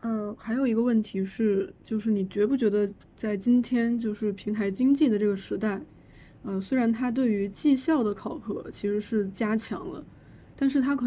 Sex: female